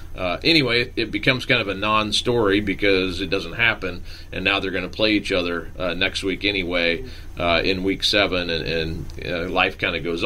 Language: English